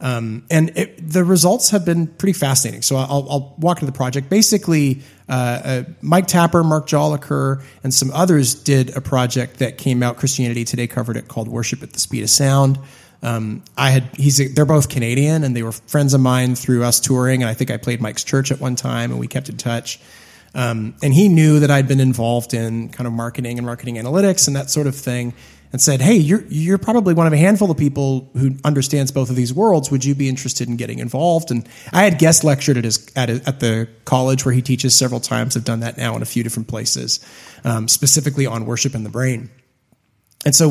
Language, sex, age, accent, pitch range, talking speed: English, male, 30-49, American, 120-150 Hz, 230 wpm